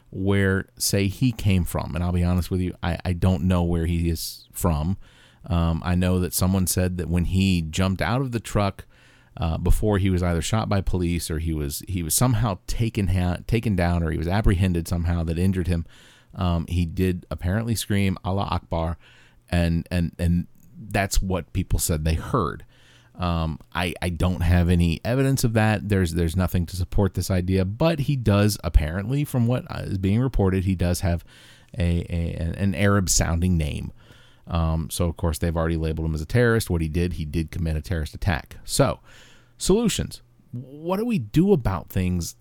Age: 40-59